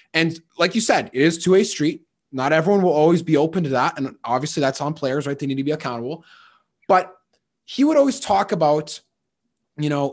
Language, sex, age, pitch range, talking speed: English, male, 20-39, 135-175 Hz, 215 wpm